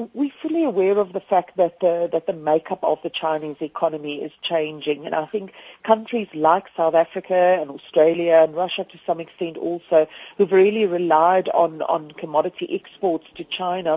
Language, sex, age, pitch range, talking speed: English, female, 40-59, 155-195 Hz, 175 wpm